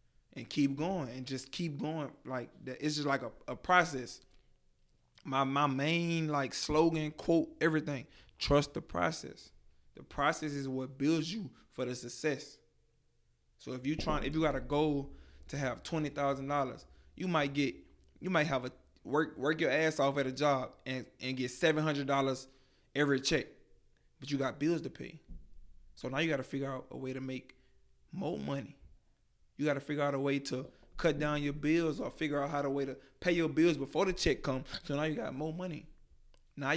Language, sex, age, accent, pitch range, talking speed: English, male, 20-39, American, 130-155 Hz, 195 wpm